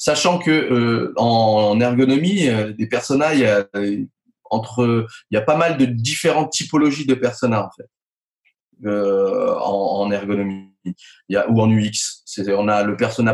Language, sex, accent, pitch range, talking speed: French, male, French, 115-145 Hz, 165 wpm